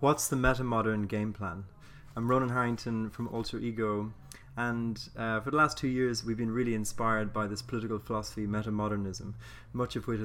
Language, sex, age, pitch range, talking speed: English, male, 20-39, 100-115 Hz, 170 wpm